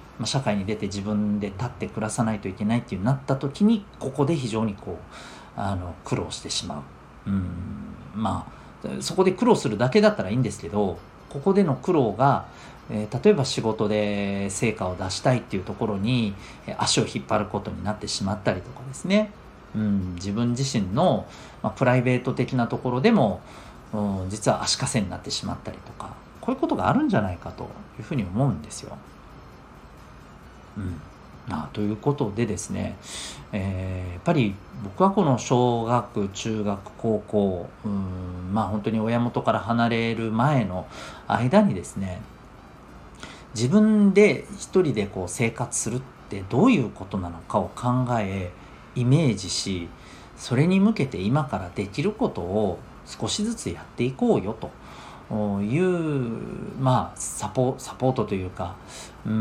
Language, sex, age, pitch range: Japanese, male, 40-59, 100-130 Hz